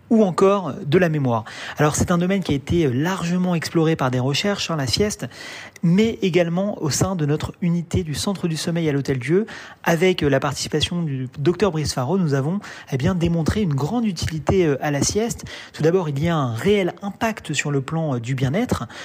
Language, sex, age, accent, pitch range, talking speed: Italian, male, 30-49, French, 145-195 Hz, 205 wpm